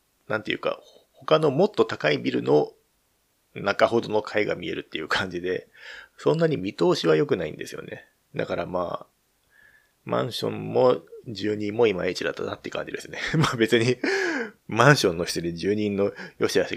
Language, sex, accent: Japanese, male, native